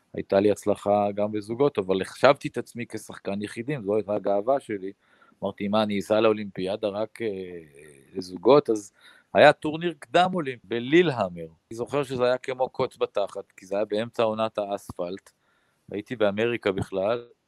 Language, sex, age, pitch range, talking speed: Hebrew, male, 40-59, 100-125 Hz, 160 wpm